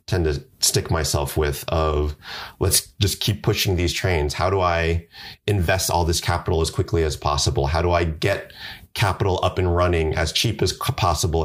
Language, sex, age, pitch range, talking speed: English, male, 30-49, 80-95 Hz, 185 wpm